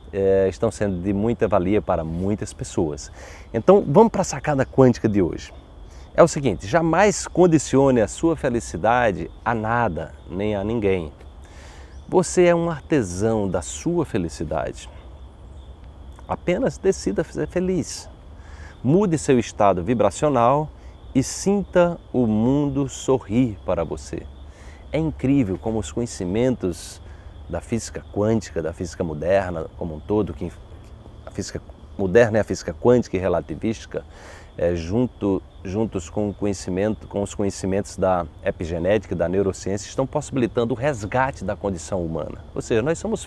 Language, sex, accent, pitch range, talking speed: Portuguese, male, Brazilian, 85-140 Hz, 140 wpm